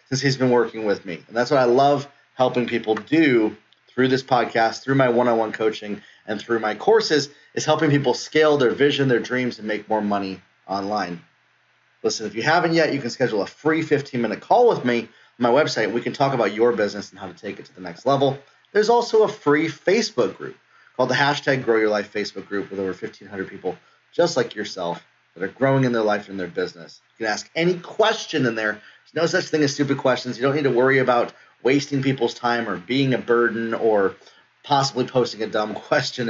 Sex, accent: male, American